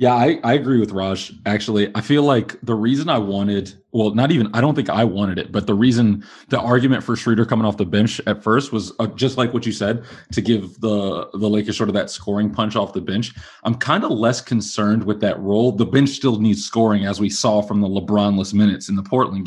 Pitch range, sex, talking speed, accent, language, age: 105-125 Hz, male, 240 wpm, American, English, 30-49